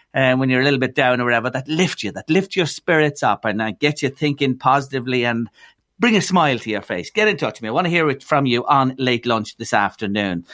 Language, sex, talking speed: English, male, 275 wpm